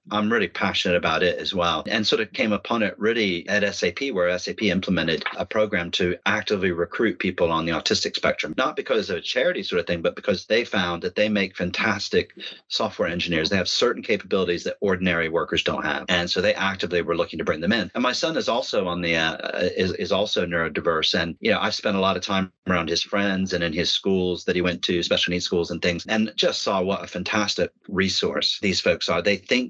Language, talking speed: English, 230 wpm